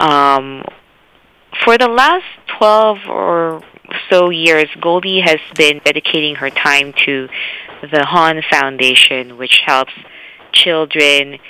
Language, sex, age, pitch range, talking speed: English, female, 20-39, 145-180 Hz, 110 wpm